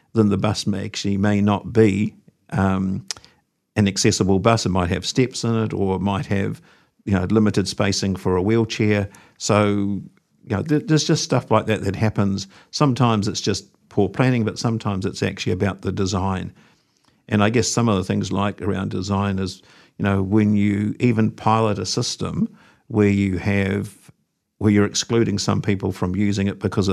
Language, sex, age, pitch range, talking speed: English, male, 50-69, 95-110 Hz, 185 wpm